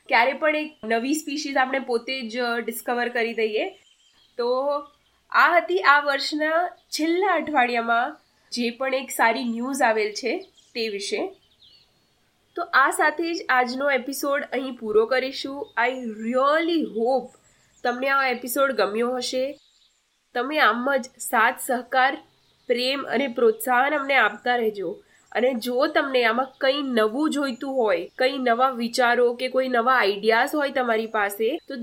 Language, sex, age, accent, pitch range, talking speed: Gujarati, female, 20-39, native, 240-290 Hz, 135 wpm